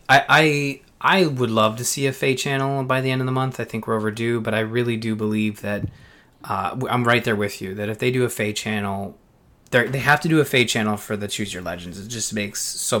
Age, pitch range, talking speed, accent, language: 20-39, 105-135 Hz, 255 wpm, American, English